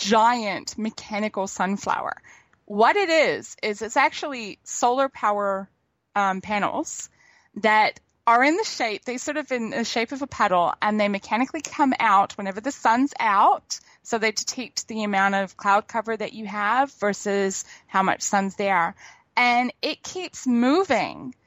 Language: English